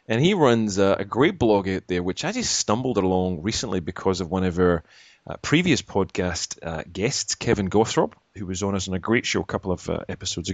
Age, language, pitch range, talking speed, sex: 30-49, English, 90-110 Hz, 205 wpm, male